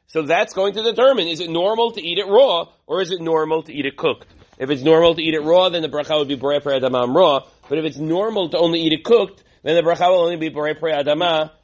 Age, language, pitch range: 40-59, English, 135-195 Hz